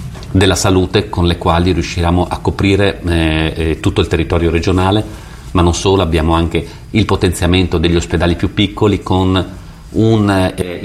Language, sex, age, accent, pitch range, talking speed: Italian, male, 40-59, native, 85-105 Hz, 155 wpm